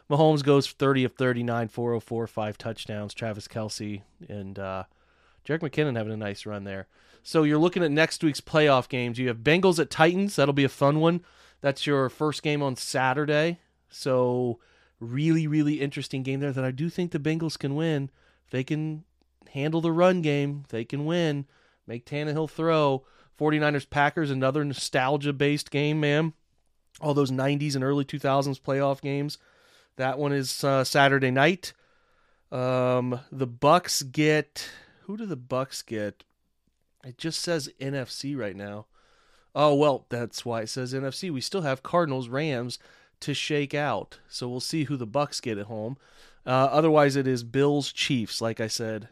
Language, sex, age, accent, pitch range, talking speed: English, male, 30-49, American, 120-150 Hz, 165 wpm